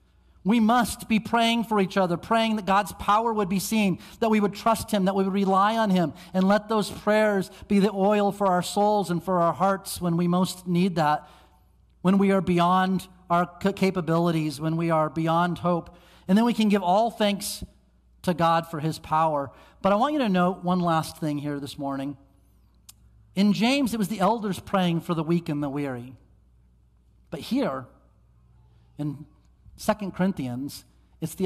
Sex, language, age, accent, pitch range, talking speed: male, English, 40-59, American, 125-195 Hz, 190 wpm